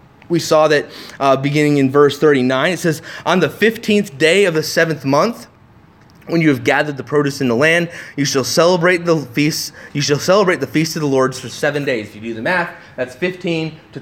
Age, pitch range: 30-49, 135-170 Hz